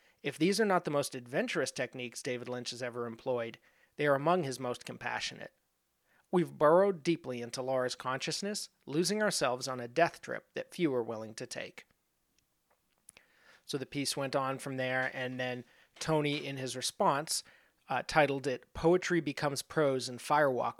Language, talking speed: English, 165 wpm